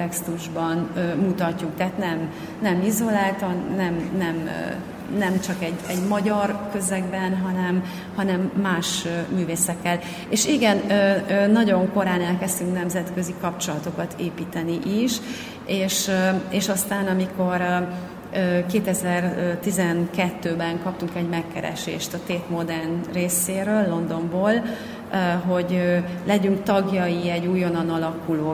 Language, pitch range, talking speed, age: Hungarian, 175-200 Hz, 110 wpm, 30-49